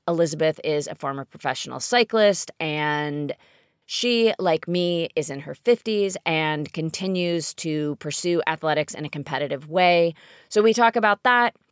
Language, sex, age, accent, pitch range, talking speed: English, female, 30-49, American, 165-230 Hz, 145 wpm